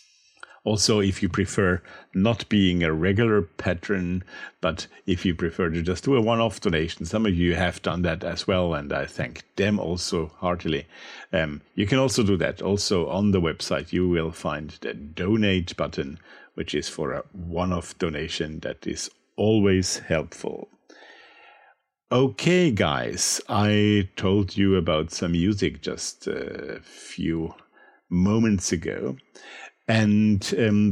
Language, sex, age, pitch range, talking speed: English, male, 50-69, 90-105 Hz, 145 wpm